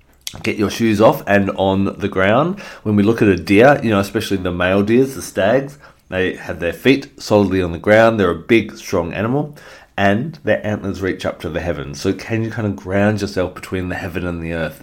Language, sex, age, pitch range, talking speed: English, male, 30-49, 90-115 Hz, 225 wpm